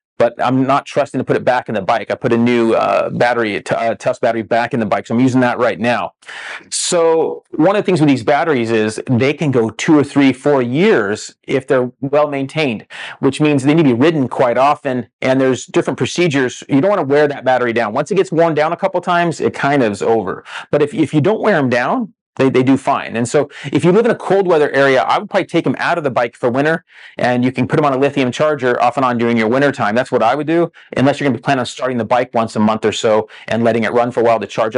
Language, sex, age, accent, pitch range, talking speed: English, male, 30-49, American, 120-150 Hz, 280 wpm